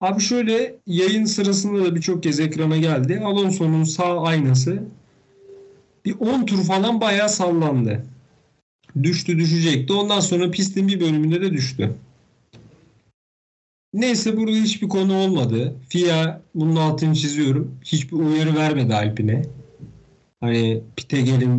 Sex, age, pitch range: male, 50-69, 130-190 Hz